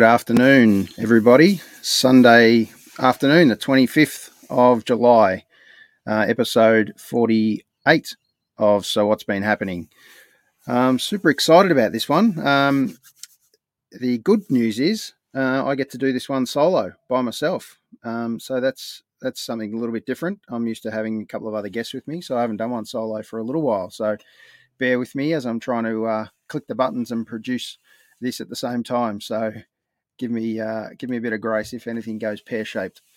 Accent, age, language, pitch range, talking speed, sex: Australian, 30-49, English, 110-130 Hz, 185 wpm, male